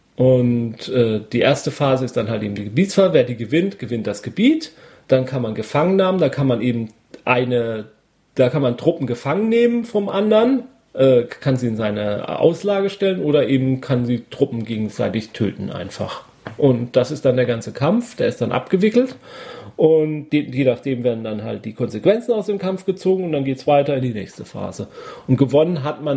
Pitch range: 120-155 Hz